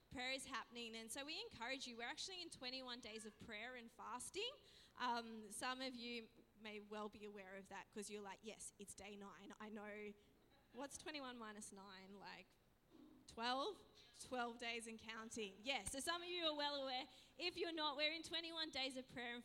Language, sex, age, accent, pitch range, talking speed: English, female, 20-39, Australian, 215-270 Hz, 200 wpm